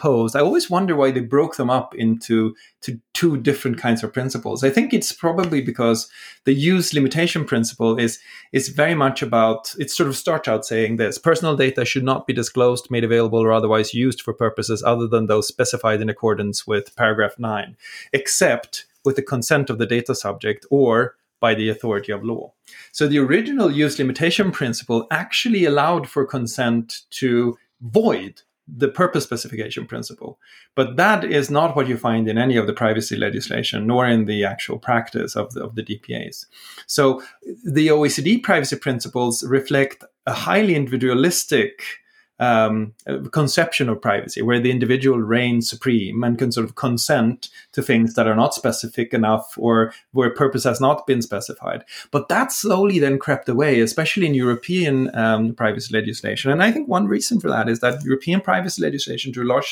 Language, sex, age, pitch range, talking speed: English, male, 30-49, 115-150 Hz, 180 wpm